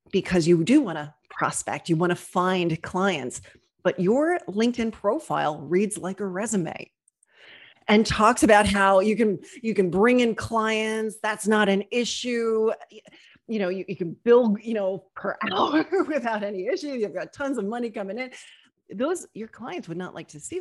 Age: 30-49